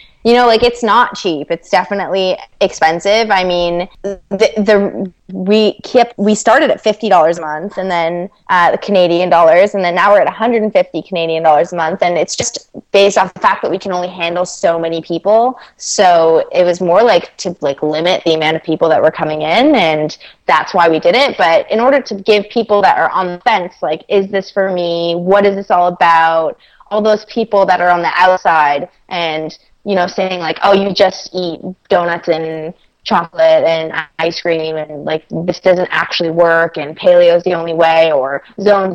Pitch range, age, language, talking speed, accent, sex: 170-210 Hz, 20-39, English, 210 wpm, American, female